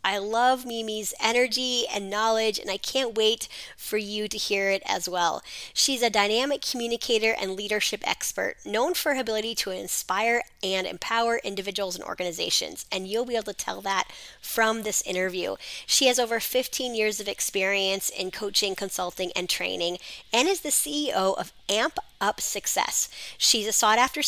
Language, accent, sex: English, American, female